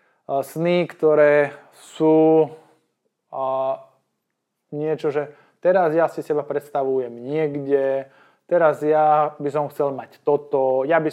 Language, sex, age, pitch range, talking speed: Slovak, male, 20-39, 140-165 Hz, 115 wpm